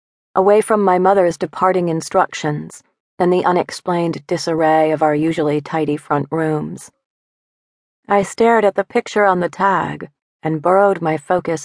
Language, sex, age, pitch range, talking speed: English, female, 40-59, 155-195 Hz, 145 wpm